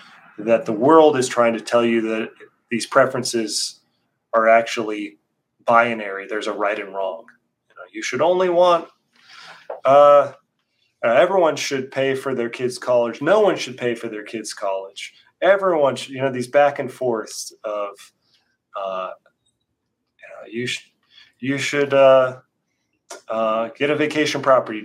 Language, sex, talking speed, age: English, male, 150 wpm, 30-49